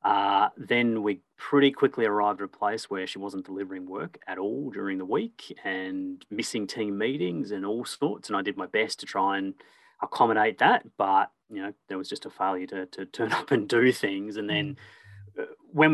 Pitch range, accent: 95-120 Hz, Australian